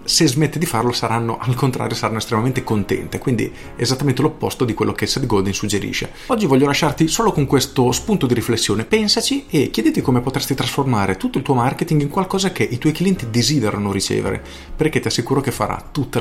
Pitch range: 105-135 Hz